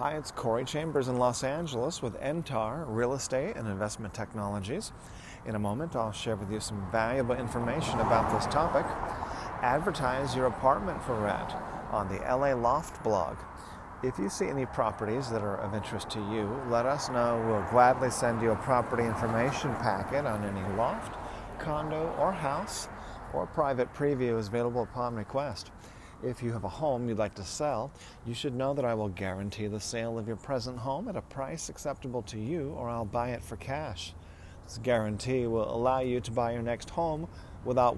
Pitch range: 105-130 Hz